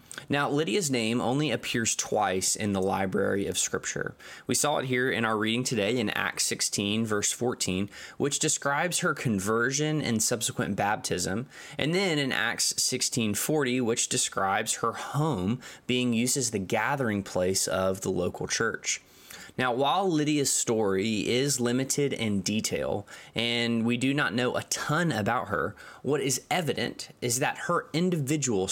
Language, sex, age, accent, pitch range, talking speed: English, male, 20-39, American, 105-140 Hz, 155 wpm